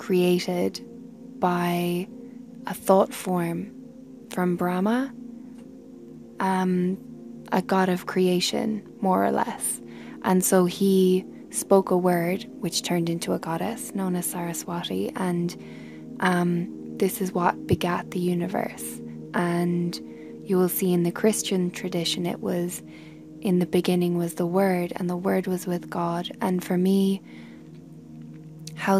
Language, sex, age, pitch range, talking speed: English, female, 10-29, 175-195 Hz, 130 wpm